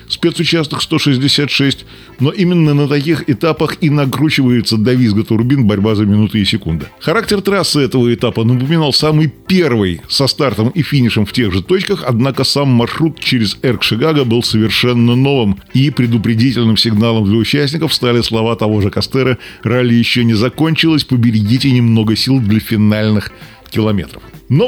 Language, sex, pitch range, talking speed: Russian, male, 110-145 Hz, 150 wpm